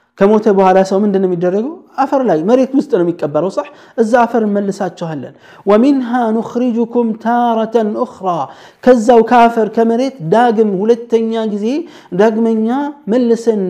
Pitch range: 190-230 Hz